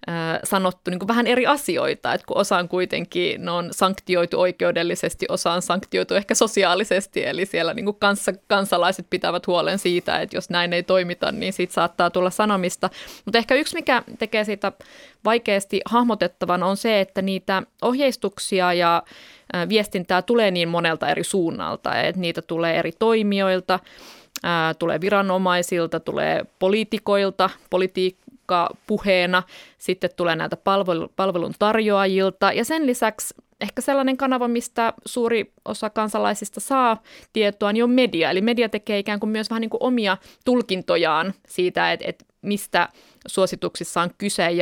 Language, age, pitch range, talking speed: Finnish, 20-39, 180-220 Hz, 130 wpm